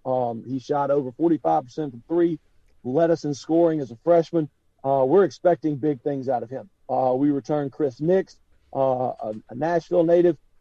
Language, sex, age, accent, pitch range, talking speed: English, male, 40-59, American, 135-170 Hz, 185 wpm